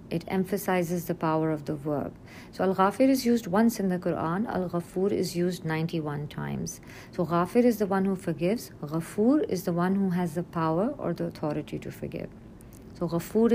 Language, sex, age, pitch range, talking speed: English, female, 50-69, 160-195 Hz, 185 wpm